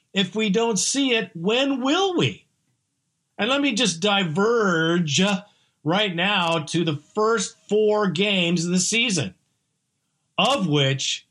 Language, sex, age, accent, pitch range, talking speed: English, male, 50-69, American, 150-200 Hz, 135 wpm